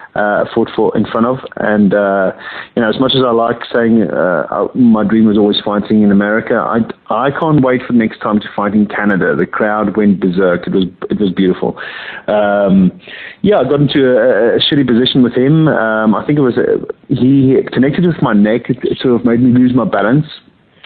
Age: 30-49